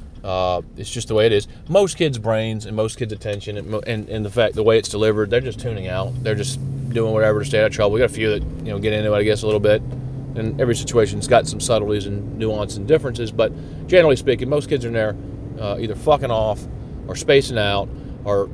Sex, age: male, 30-49